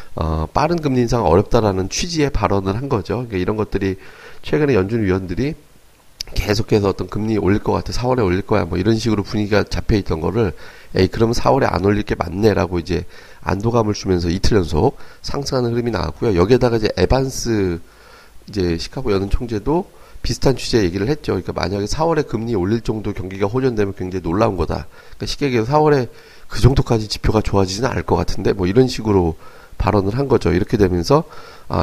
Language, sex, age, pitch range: Korean, male, 30-49, 95-125 Hz